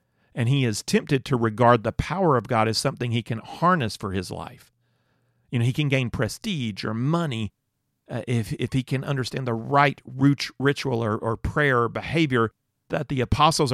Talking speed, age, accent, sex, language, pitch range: 190 wpm, 40-59, American, male, English, 120-145 Hz